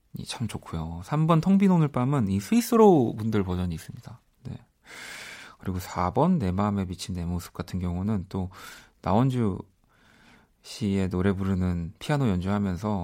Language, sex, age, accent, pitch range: Korean, male, 30-49, native, 90-125 Hz